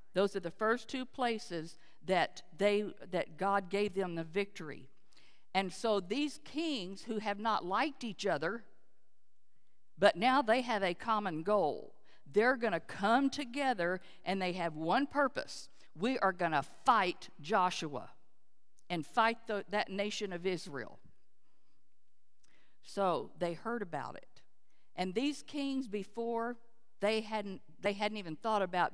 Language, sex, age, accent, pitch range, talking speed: English, female, 50-69, American, 185-235 Hz, 145 wpm